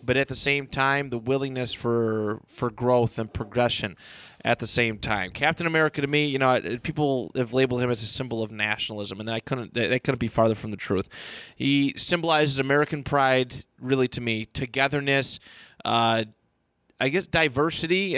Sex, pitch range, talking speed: male, 115-140 Hz, 175 wpm